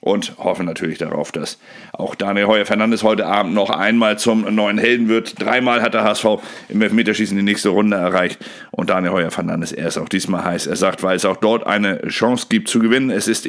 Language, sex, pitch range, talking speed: German, male, 90-110 Hz, 210 wpm